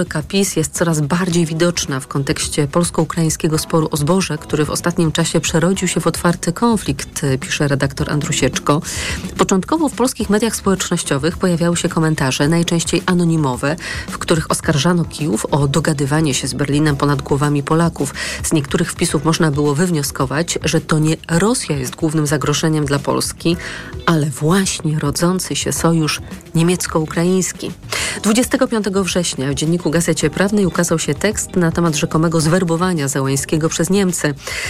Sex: female